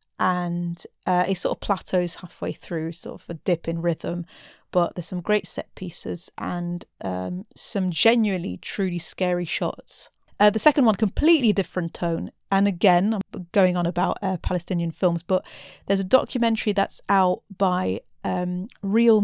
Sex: female